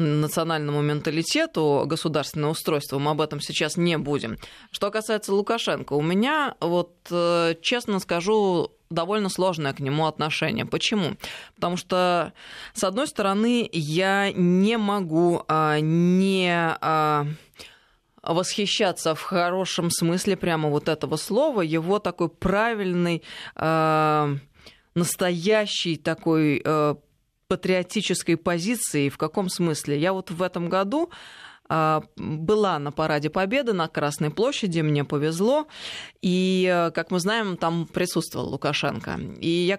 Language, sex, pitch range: Russian, female, 155-190 Hz